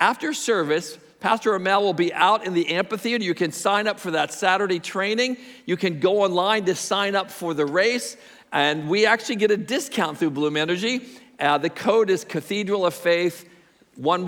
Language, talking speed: English, 190 wpm